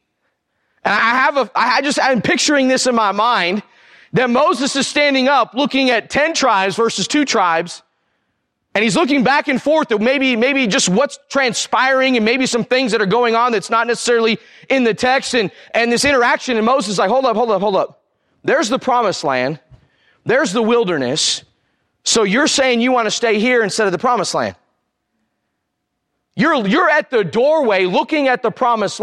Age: 30-49